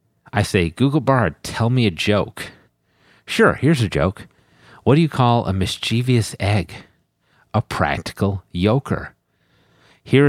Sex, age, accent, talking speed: male, 50-69, American, 135 wpm